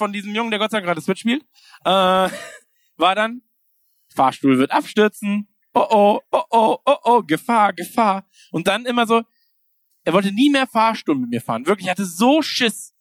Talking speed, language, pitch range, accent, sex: 195 wpm, German, 145-225 Hz, German, male